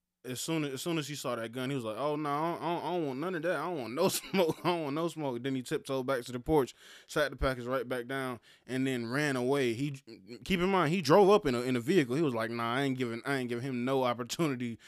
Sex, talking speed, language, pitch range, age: male, 305 wpm, English, 120-145 Hz, 20-39